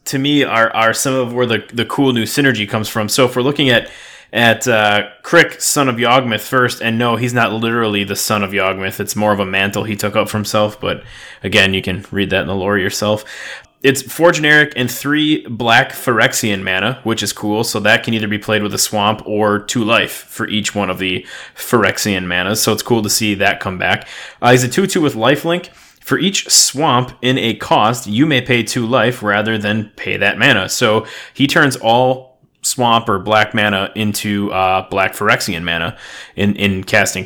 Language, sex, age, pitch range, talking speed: English, male, 20-39, 100-125 Hz, 210 wpm